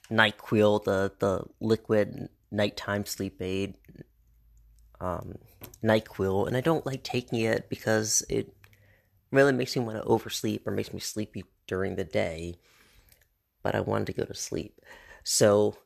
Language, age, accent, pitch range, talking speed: English, 30-49, American, 95-120 Hz, 145 wpm